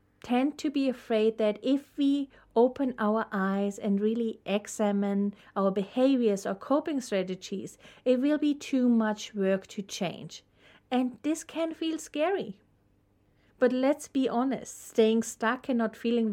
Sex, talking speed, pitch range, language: female, 145 wpm, 205-255 Hz, English